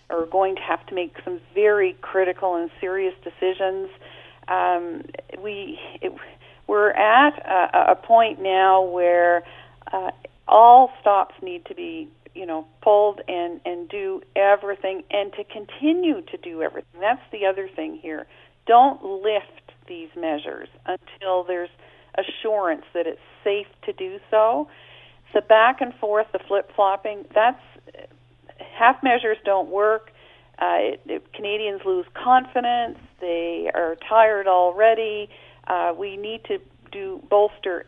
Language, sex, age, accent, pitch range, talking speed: English, female, 50-69, American, 180-245 Hz, 135 wpm